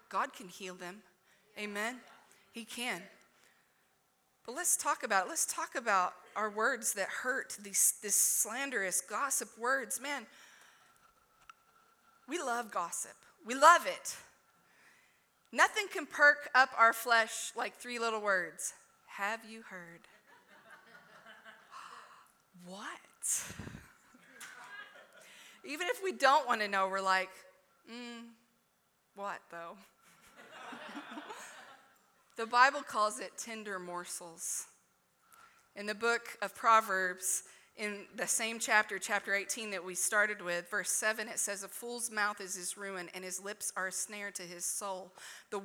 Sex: female